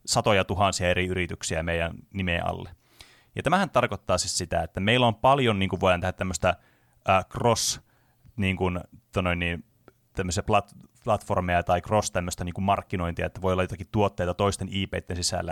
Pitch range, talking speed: 95-120 Hz, 155 wpm